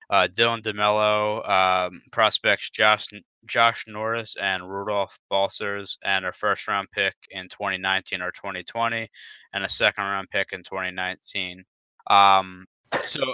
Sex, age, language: male, 20-39, English